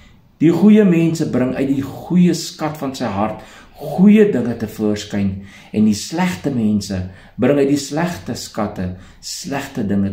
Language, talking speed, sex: English, 155 wpm, male